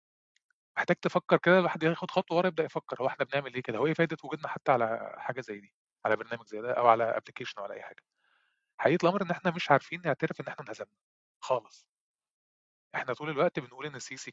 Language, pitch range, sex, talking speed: Arabic, 135-175 Hz, male, 220 wpm